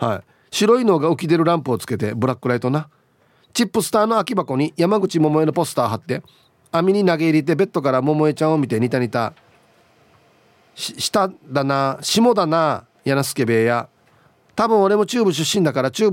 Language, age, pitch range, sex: Japanese, 40-59, 125-190 Hz, male